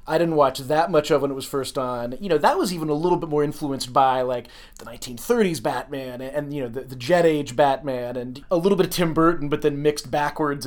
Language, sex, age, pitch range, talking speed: English, male, 30-49, 130-160 Hz, 255 wpm